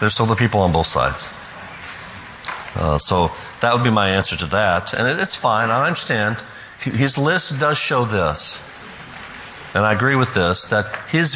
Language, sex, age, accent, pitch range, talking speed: English, male, 50-69, American, 90-120 Hz, 175 wpm